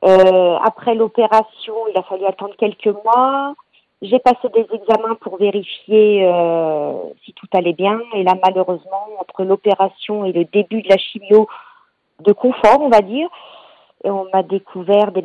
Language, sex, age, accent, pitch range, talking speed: French, female, 40-59, French, 190-230 Hz, 155 wpm